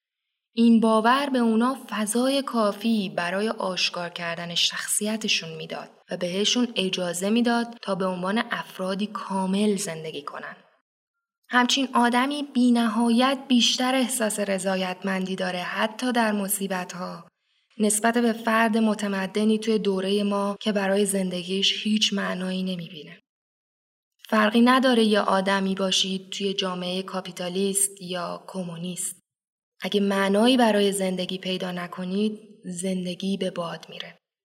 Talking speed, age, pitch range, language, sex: 115 wpm, 20-39, 185-220 Hz, Persian, female